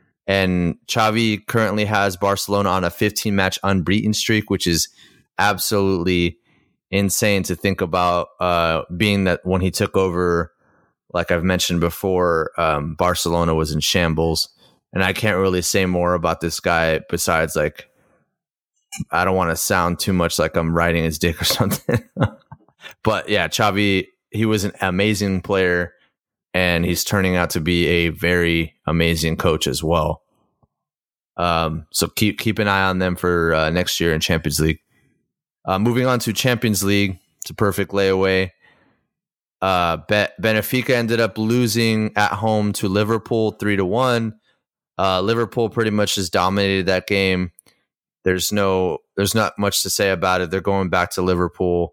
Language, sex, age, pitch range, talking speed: English, male, 30-49, 85-100 Hz, 160 wpm